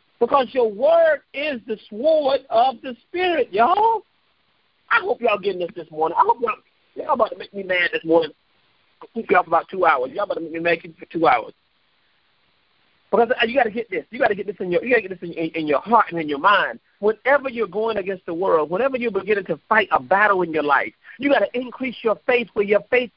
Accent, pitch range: American, 195-275 Hz